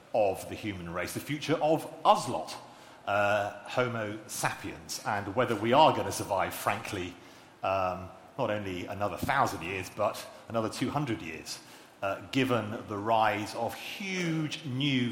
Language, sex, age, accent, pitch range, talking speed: English, male, 40-59, British, 105-140 Hz, 145 wpm